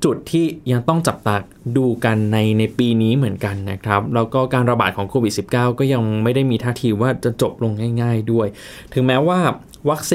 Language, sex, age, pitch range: Thai, male, 20-39, 115-140 Hz